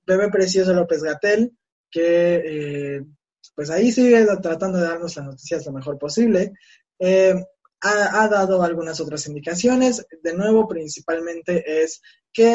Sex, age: male, 20-39